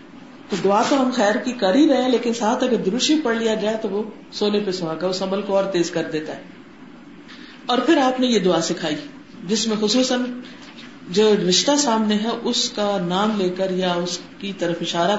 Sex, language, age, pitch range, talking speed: female, Urdu, 40-59, 195-280 Hz, 215 wpm